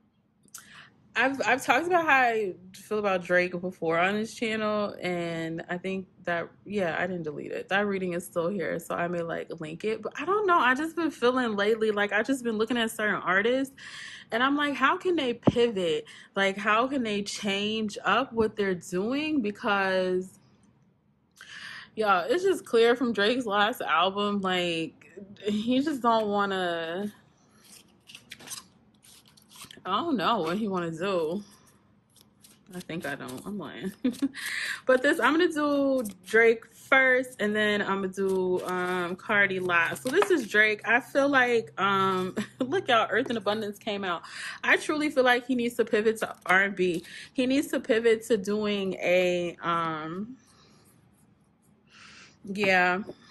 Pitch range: 185-245 Hz